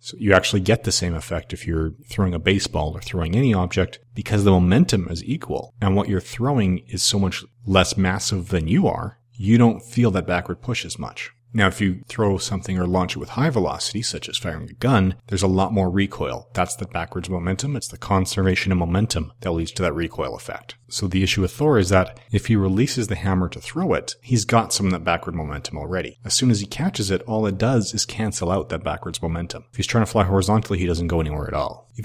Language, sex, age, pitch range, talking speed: English, male, 40-59, 90-115 Hz, 240 wpm